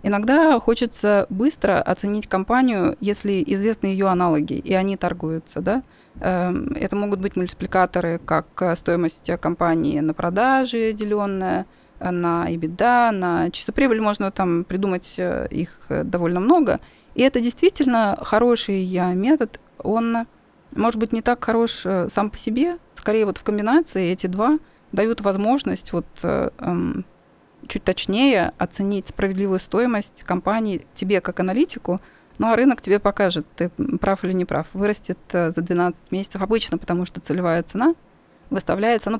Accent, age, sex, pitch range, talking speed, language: native, 30-49, female, 180-230 Hz, 135 wpm, Russian